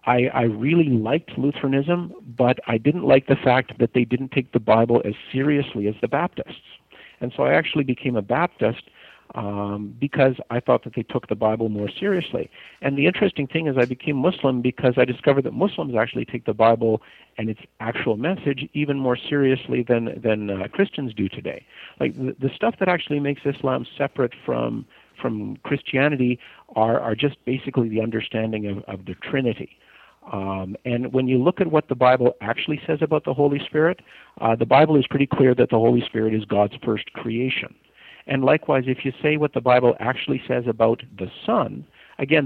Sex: male